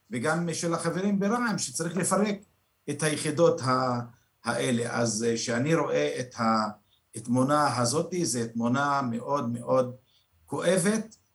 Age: 50-69